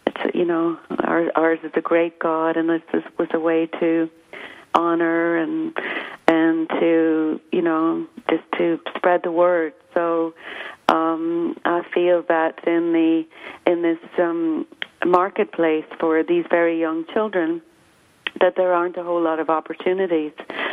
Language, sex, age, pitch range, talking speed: English, female, 40-59, 165-185 Hz, 140 wpm